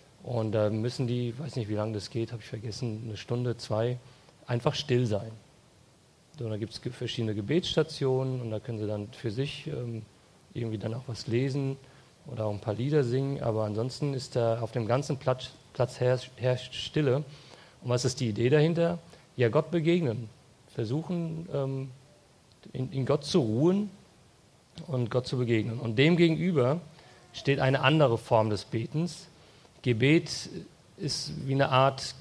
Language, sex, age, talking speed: English, male, 40-59, 170 wpm